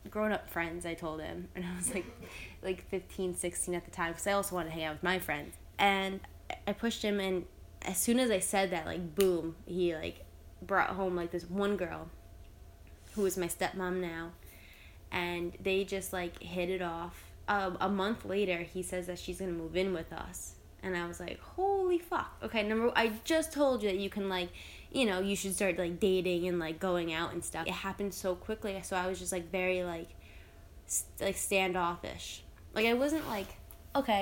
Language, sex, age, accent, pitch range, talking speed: English, female, 10-29, American, 165-195 Hz, 210 wpm